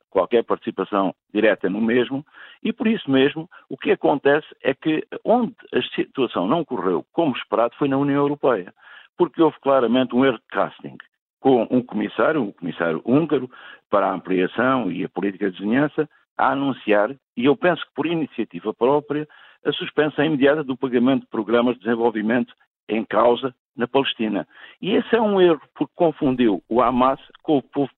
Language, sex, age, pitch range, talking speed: Portuguese, male, 60-79, 115-145 Hz, 170 wpm